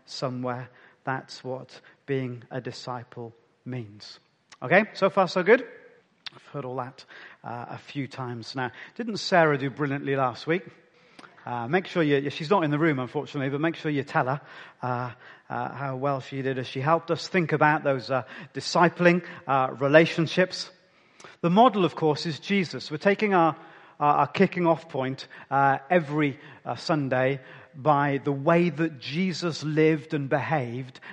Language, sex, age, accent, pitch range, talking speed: English, male, 40-59, British, 130-175 Hz, 170 wpm